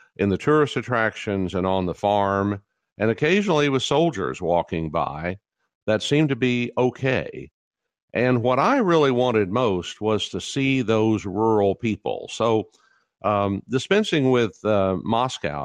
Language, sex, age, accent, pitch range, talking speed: English, male, 50-69, American, 95-125 Hz, 140 wpm